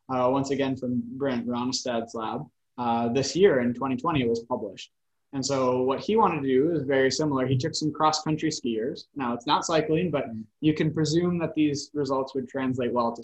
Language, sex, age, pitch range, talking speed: English, male, 20-39, 125-155 Hz, 205 wpm